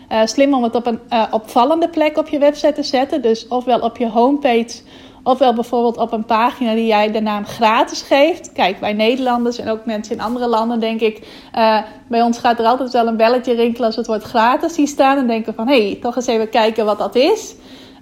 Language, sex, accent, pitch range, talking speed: Dutch, female, Dutch, 225-265 Hz, 225 wpm